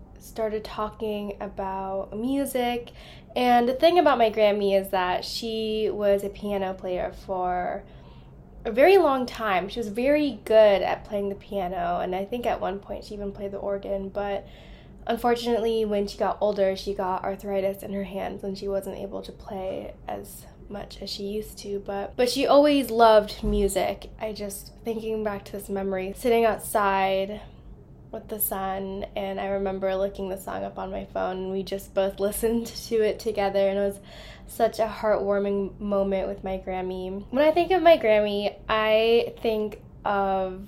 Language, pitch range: English, 195-225 Hz